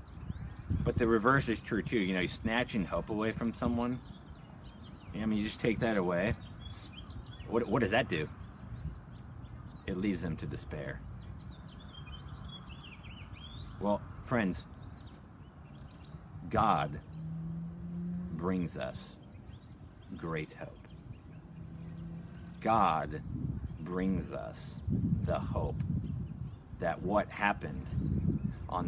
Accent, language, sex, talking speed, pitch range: American, English, male, 100 wpm, 105-155 Hz